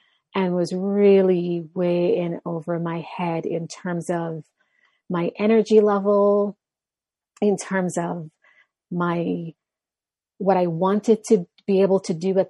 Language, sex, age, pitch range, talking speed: English, female, 30-49, 175-200 Hz, 130 wpm